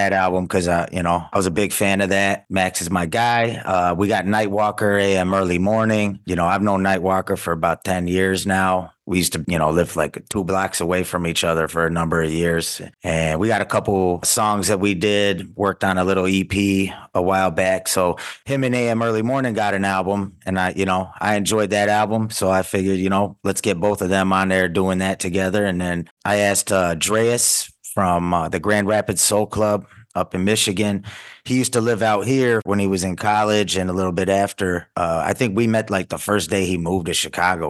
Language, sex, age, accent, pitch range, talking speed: English, male, 30-49, American, 90-105 Hz, 230 wpm